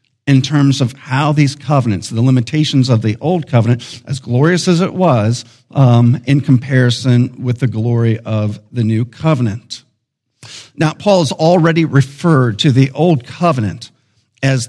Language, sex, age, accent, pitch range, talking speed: English, male, 50-69, American, 120-150 Hz, 150 wpm